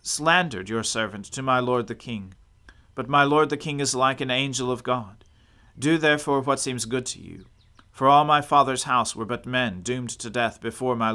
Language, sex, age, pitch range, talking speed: English, male, 40-59, 100-135 Hz, 210 wpm